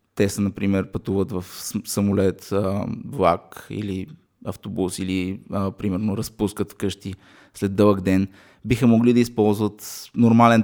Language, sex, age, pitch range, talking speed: Bulgarian, male, 20-39, 95-110 Hz, 120 wpm